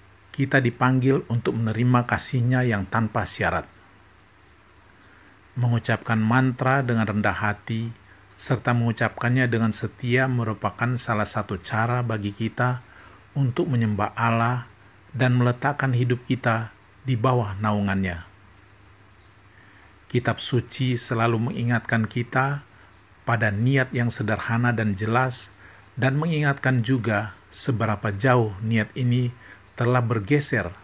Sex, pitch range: male, 100-120 Hz